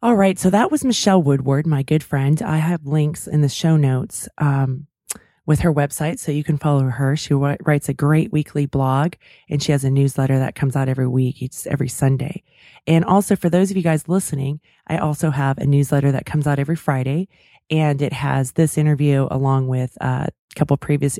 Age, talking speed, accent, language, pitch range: 30-49, 215 wpm, American, English, 140-165 Hz